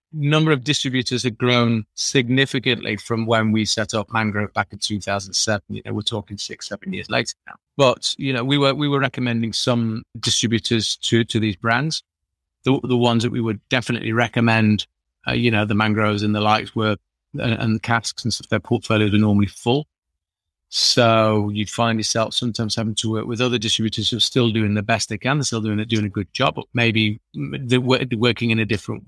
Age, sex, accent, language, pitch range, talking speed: 30-49, male, British, English, 110-130 Hz, 205 wpm